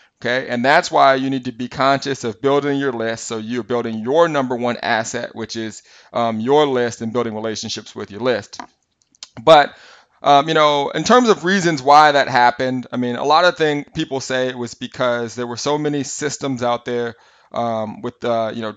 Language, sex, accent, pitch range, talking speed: English, male, American, 120-145 Hz, 210 wpm